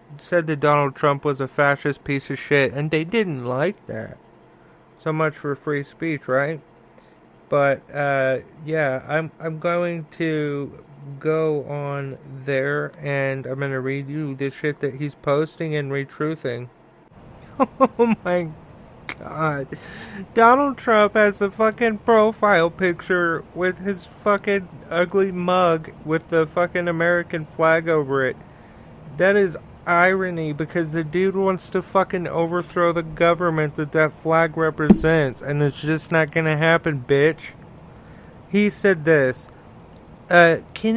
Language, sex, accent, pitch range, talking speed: English, male, American, 145-185 Hz, 140 wpm